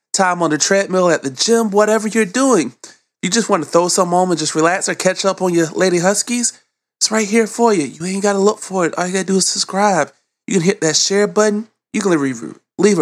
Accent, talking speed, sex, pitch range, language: American, 255 wpm, male, 130-185 Hz, English